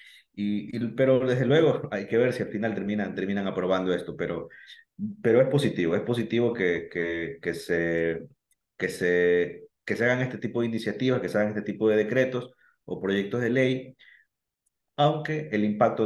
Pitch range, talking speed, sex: 90-110 Hz, 180 wpm, male